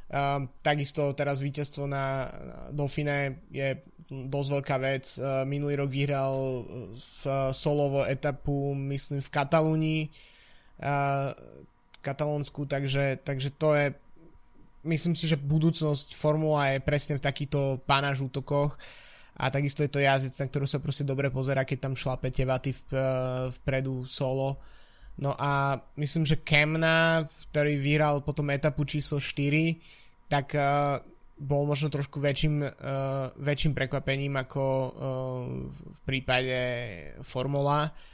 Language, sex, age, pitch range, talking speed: Slovak, male, 20-39, 135-145 Hz, 120 wpm